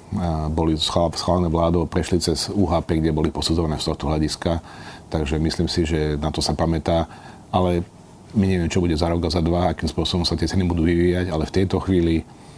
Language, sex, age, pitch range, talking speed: Slovak, male, 40-59, 80-95 Hz, 200 wpm